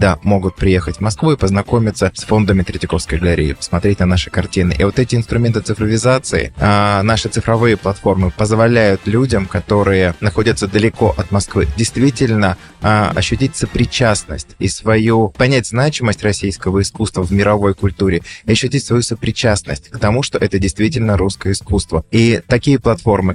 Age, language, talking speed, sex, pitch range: 20-39, Russian, 140 wpm, male, 95-115 Hz